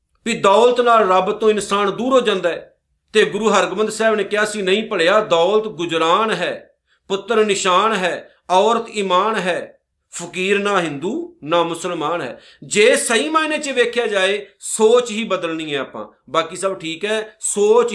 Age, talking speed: 50-69, 165 wpm